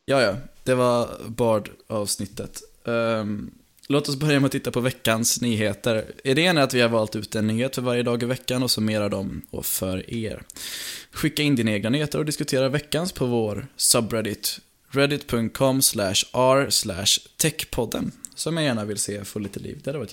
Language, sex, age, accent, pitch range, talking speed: English, male, 10-29, Swedish, 105-135 Hz, 180 wpm